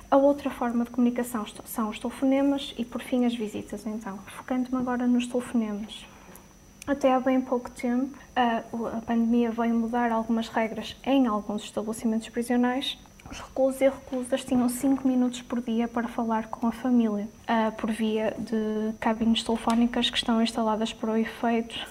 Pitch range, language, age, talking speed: 225-250 Hz, Portuguese, 20-39, 160 wpm